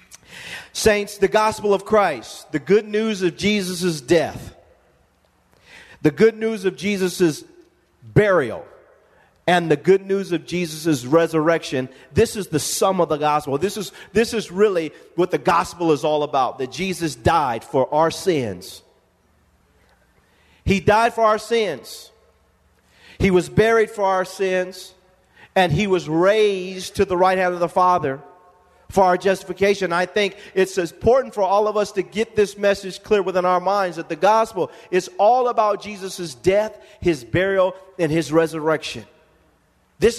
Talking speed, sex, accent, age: 155 wpm, male, American, 40-59